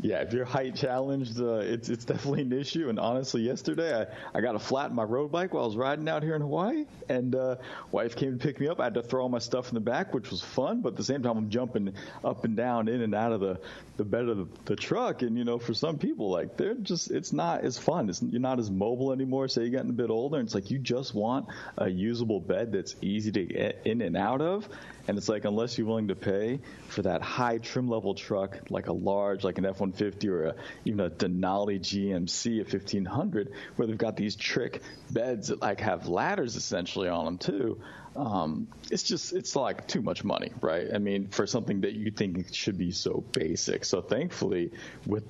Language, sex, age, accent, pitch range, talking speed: English, male, 30-49, American, 100-130 Hz, 240 wpm